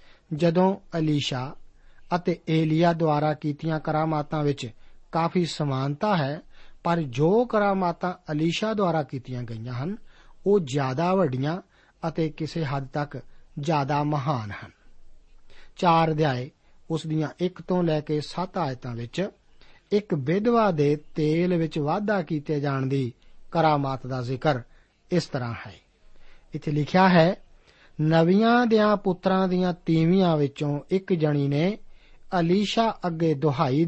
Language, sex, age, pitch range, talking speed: Punjabi, male, 50-69, 145-175 Hz, 105 wpm